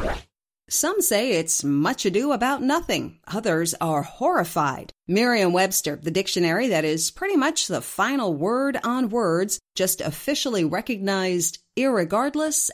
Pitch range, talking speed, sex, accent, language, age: 165-240 Hz, 120 wpm, female, American, English, 40-59